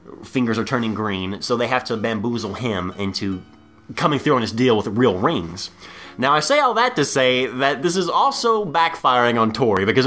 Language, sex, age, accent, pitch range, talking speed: English, male, 20-39, American, 105-165 Hz, 205 wpm